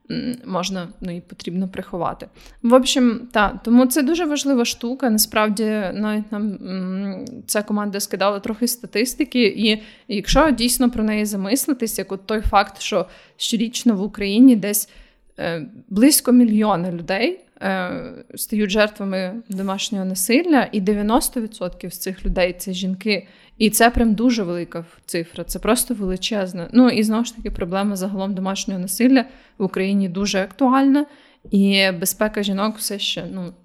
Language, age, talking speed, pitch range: Ukrainian, 20-39, 140 wpm, 190-240 Hz